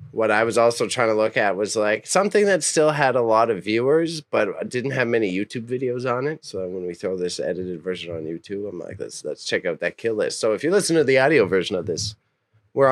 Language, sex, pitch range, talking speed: English, male, 110-145 Hz, 255 wpm